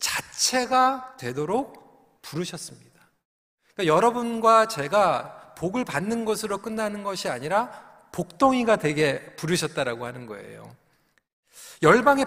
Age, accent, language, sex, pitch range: 40-59, native, Korean, male, 160-235 Hz